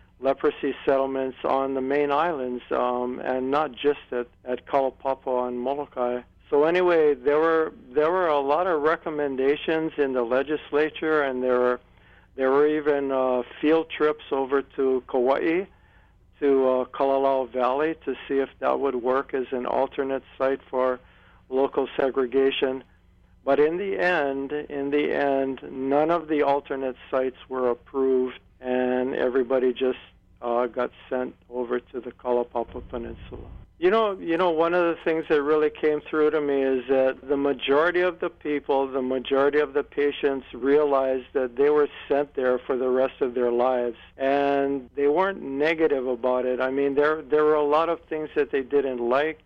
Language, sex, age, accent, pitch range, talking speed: English, male, 50-69, American, 125-145 Hz, 170 wpm